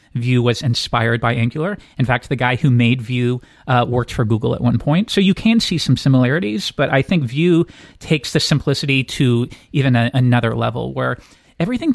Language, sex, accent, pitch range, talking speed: English, male, American, 125-160 Hz, 195 wpm